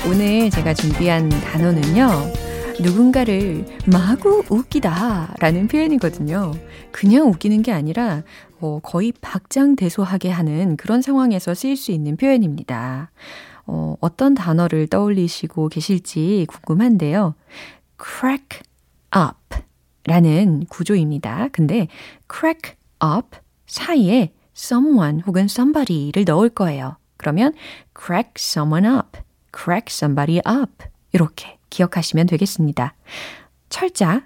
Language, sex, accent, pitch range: Korean, female, native, 160-240 Hz